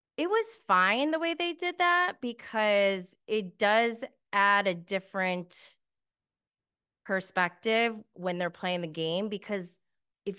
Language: English